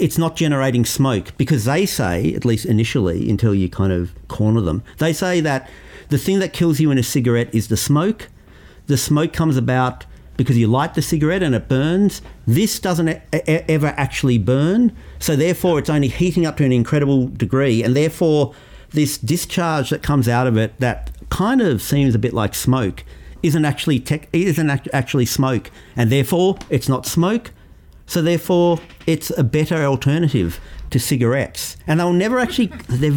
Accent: Australian